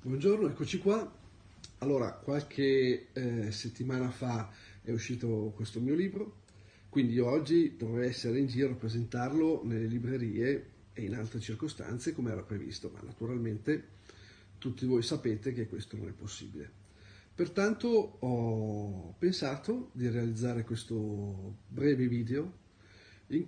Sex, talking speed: male, 125 wpm